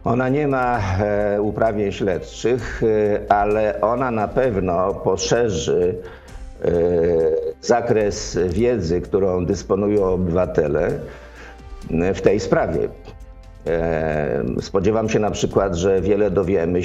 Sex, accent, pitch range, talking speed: male, native, 90-110 Hz, 90 wpm